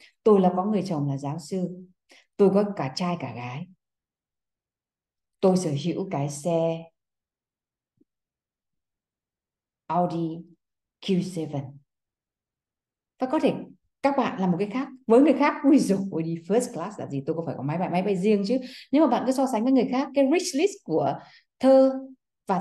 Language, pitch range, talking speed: Vietnamese, 155-230 Hz, 175 wpm